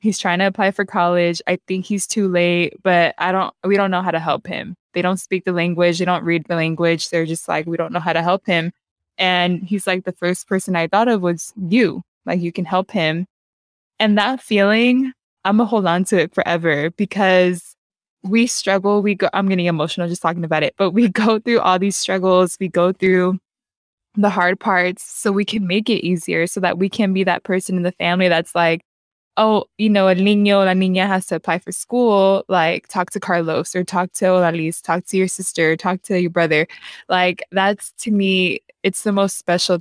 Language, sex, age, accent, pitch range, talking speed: English, female, 20-39, American, 170-195 Hz, 225 wpm